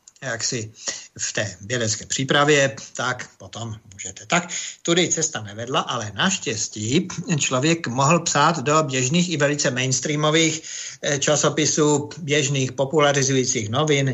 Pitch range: 115-140 Hz